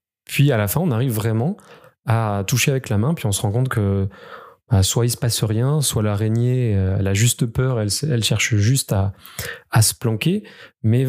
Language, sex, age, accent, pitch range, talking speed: French, male, 20-39, French, 115-150 Hz, 215 wpm